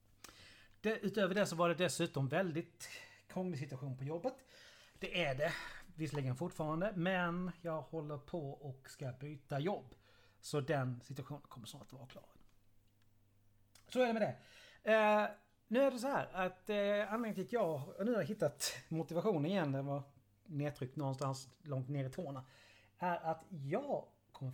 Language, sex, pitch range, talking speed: Swedish, male, 110-175 Hz, 170 wpm